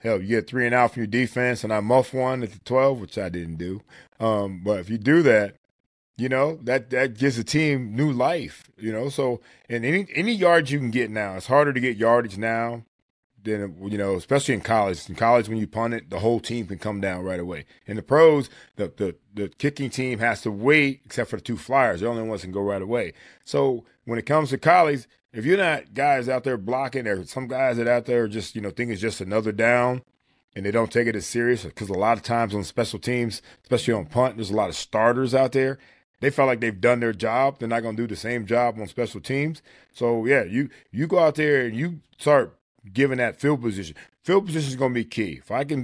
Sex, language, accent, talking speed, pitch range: male, English, American, 250 wpm, 110-135 Hz